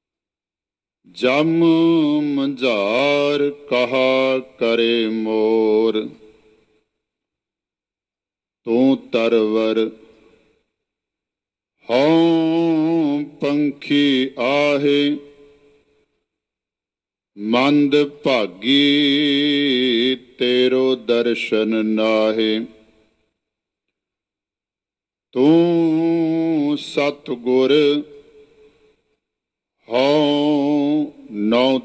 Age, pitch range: 50-69, 110-145 Hz